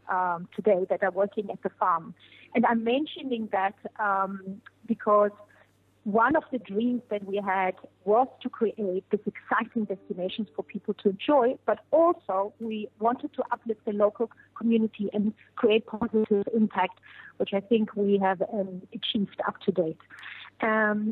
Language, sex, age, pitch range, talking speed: English, female, 30-49, 205-245 Hz, 155 wpm